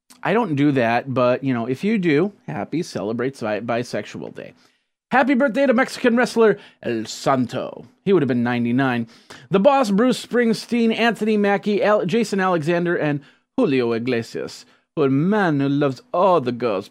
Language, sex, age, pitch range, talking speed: English, male, 30-49, 125-195 Hz, 165 wpm